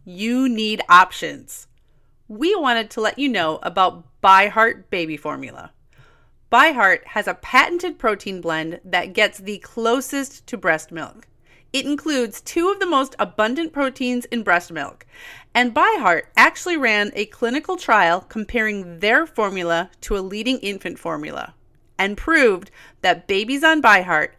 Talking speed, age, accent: 145 wpm, 30-49, American